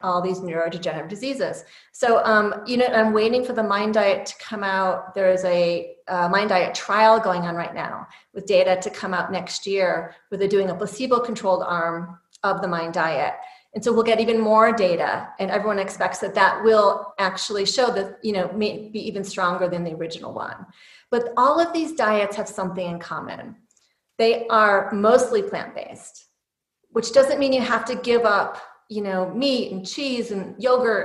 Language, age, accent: English, 30-49, American